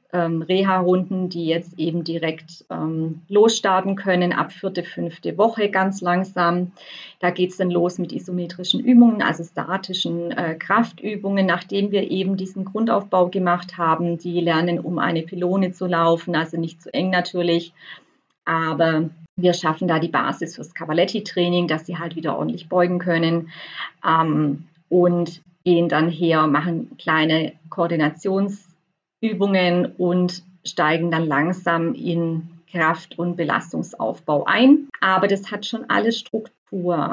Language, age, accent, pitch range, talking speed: German, 30-49, German, 170-200 Hz, 135 wpm